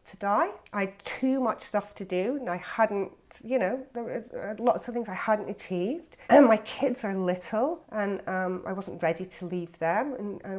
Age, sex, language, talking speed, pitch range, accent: 40-59, female, English, 200 wpm, 165-205 Hz, British